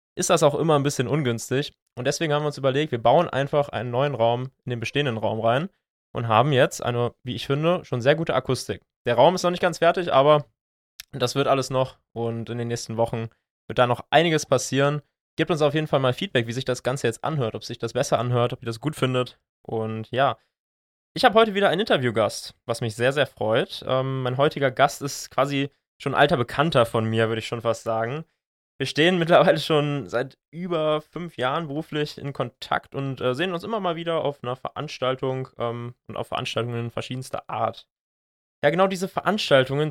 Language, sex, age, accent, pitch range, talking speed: German, male, 20-39, German, 120-155 Hz, 210 wpm